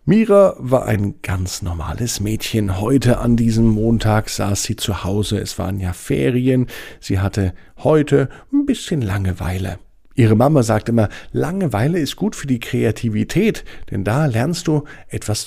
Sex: male